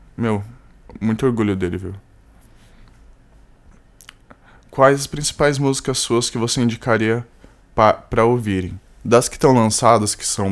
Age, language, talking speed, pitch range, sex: 10-29, Portuguese, 125 wpm, 95-115 Hz, male